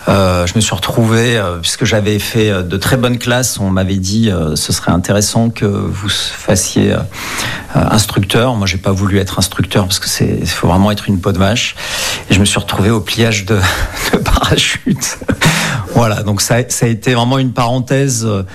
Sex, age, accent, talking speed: male, 40-59, French, 195 wpm